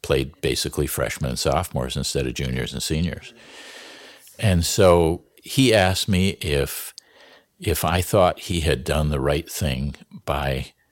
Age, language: 60-79, English